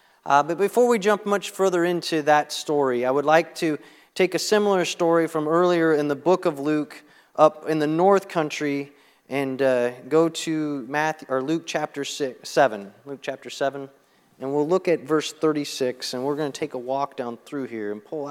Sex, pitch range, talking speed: male, 135-175 Hz, 200 wpm